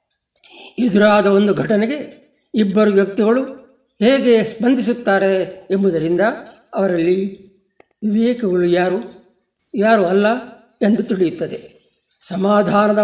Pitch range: 195-235 Hz